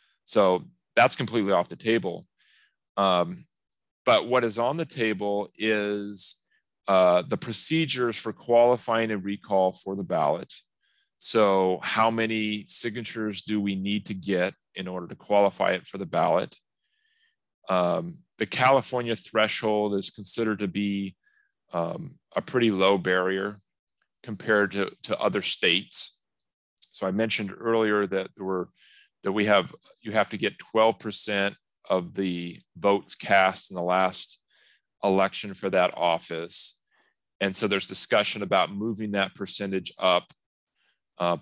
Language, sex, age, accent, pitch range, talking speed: English, male, 30-49, American, 95-110 Hz, 140 wpm